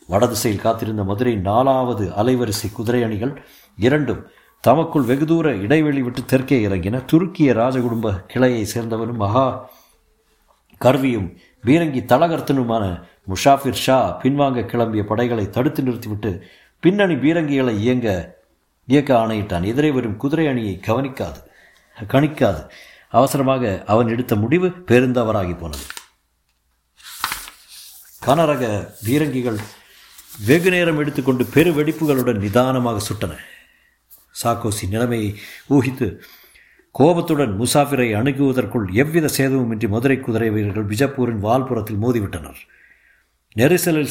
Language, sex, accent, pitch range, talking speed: Tamil, male, native, 105-140 Hz, 90 wpm